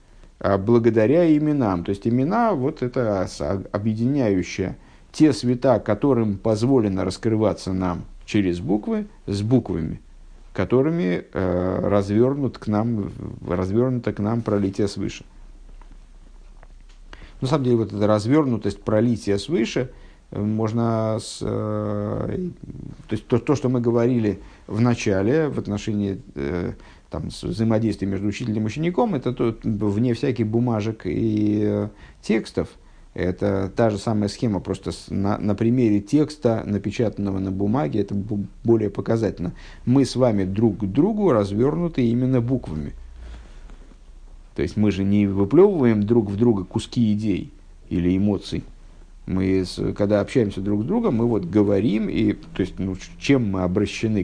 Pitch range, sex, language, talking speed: 100-120 Hz, male, Russian, 135 wpm